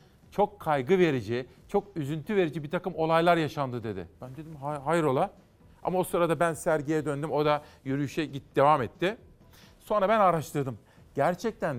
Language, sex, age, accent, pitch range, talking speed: Turkish, male, 40-59, native, 145-190 Hz, 160 wpm